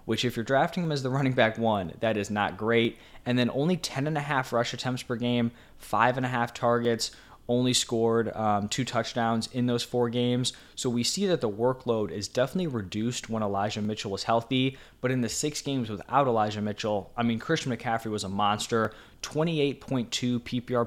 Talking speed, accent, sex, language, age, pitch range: 200 wpm, American, male, English, 20-39, 110-130 Hz